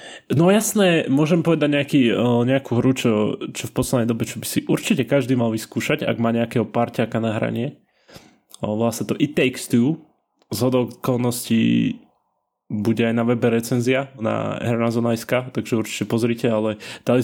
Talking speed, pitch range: 150 wpm, 115-135 Hz